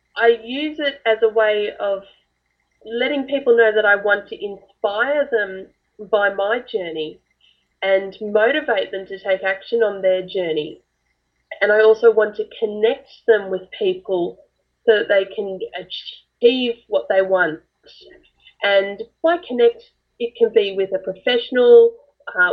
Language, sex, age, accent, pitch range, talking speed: English, female, 10-29, Australian, 195-285 Hz, 150 wpm